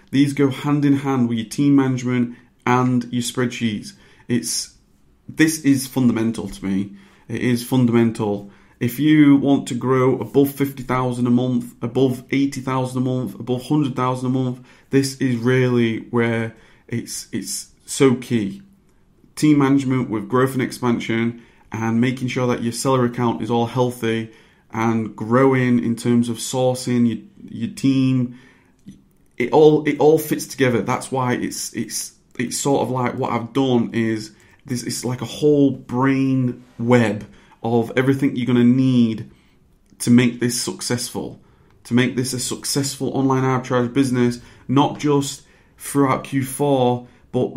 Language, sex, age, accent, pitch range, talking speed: English, male, 30-49, British, 120-140 Hz, 155 wpm